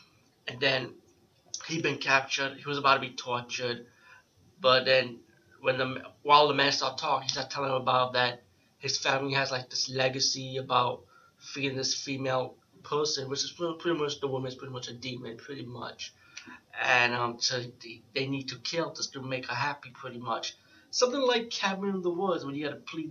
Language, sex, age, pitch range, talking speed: English, male, 30-49, 125-145 Hz, 190 wpm